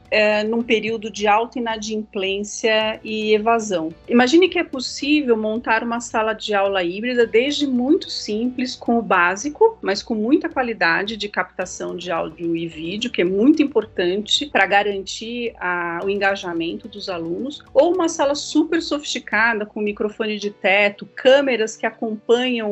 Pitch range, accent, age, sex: 210-265 Hz, Brazilian, 40-59, female